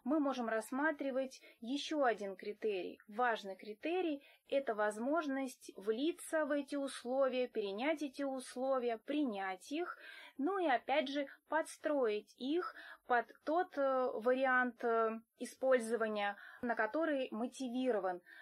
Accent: native